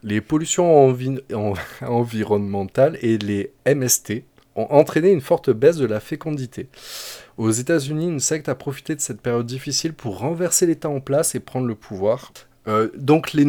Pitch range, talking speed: 105-155 Hz, 170 wpm